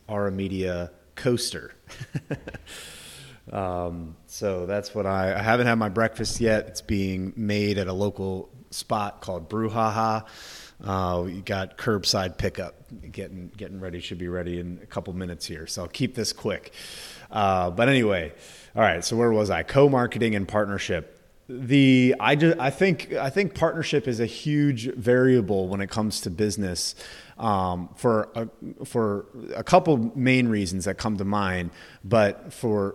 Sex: male